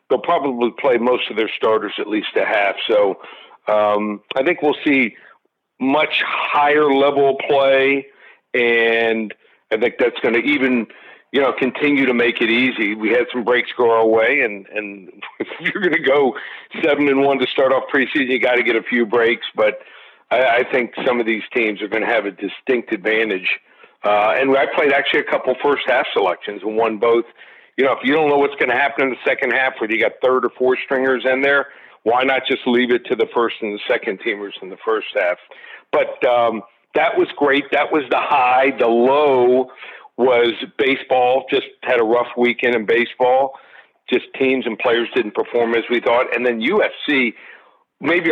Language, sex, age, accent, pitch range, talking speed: English, male, 50-69, American, 115-140 Hz, 200 wpm